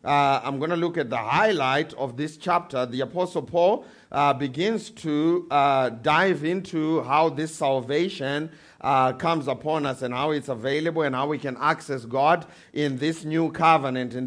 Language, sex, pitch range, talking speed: English, male, 140-175 Hz, 175 wpm